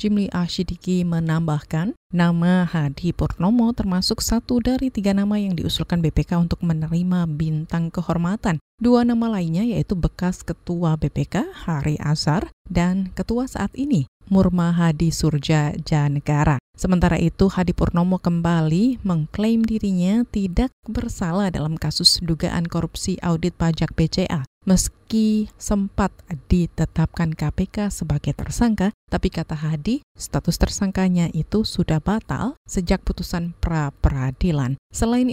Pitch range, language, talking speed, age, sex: 165-210 Hz, Indonesian, 115 wpm, 30-49, female